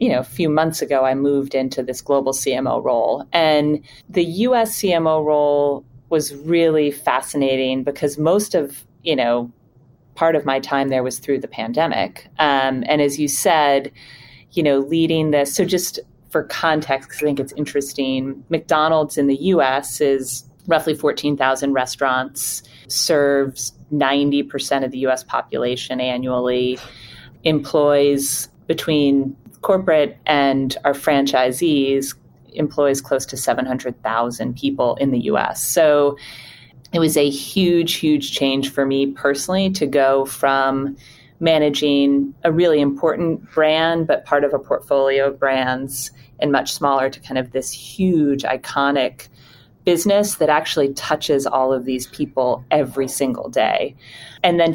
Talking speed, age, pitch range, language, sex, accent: 140 wpm, 30-49, 130-150 Hz, English, female, American